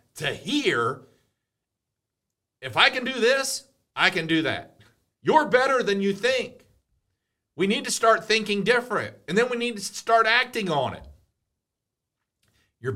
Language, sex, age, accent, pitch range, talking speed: English, male, 50-69, American, 120-185 Hz, 150 wpm